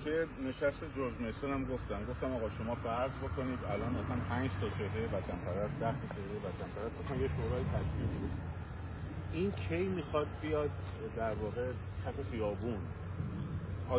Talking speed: 85 wpm